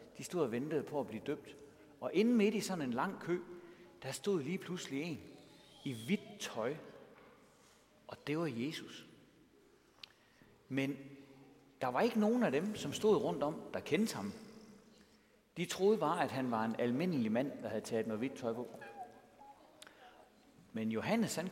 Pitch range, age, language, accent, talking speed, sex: 140-205 Hz, 60-79, Danish, native, 170 wpm, male